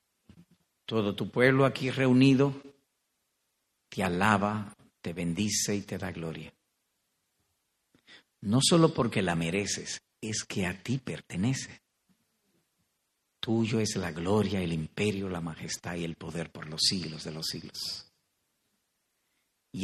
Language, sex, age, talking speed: Spanish, male, 50-69, 125 wpm